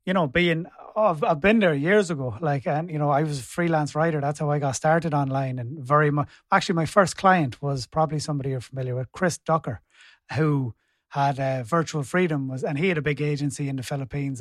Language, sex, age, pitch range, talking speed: English, male, 30-49, 140-170 Hz, 230 wpm